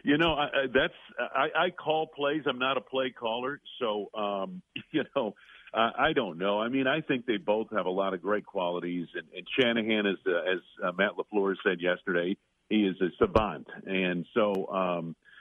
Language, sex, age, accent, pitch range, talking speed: English, male, 50-69, American, 95-130 Hz, 185 wpm